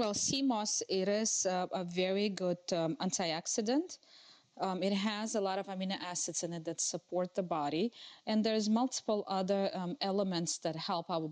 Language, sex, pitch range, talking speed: English, female, 165-205 Hz, 180 wpm